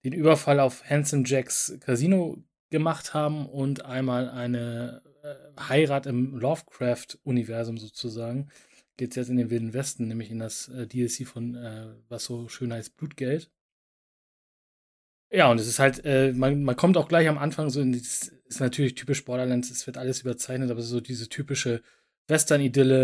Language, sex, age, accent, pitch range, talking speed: German, male, 20-39, German, 120-135 Hz, 170 wpm